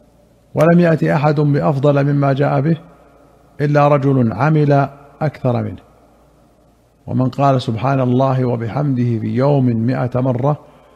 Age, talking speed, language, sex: 50-69, 115 wpm, Arabic, male